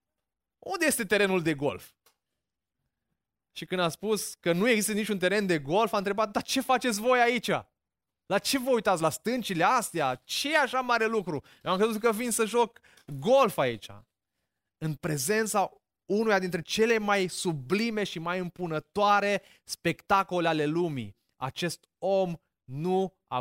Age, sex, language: 20-39, male, Romanian